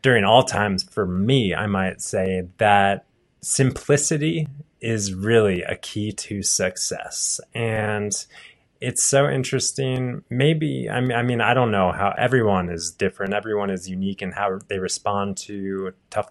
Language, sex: English, male